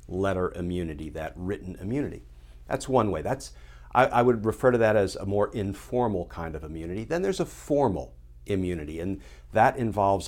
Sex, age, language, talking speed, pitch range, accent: male, 50-69, English, 175 wpm, 85-115 Hz, American